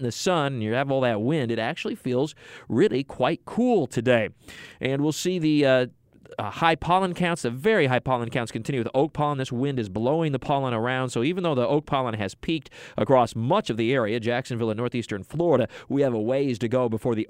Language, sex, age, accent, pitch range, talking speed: English, male, 40-59, American, 115-145 Hz, 230 wpm